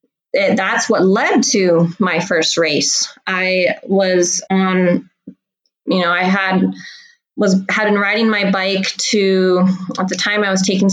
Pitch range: 175-210 Hz